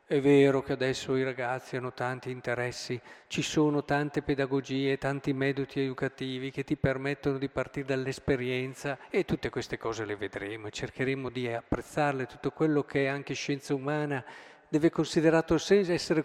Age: 50-69